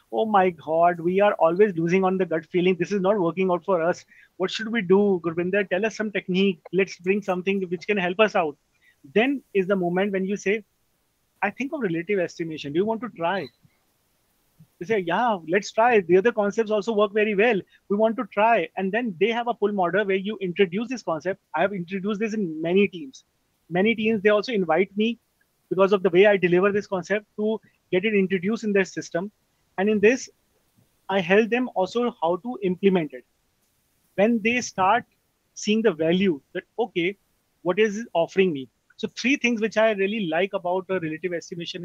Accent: Indian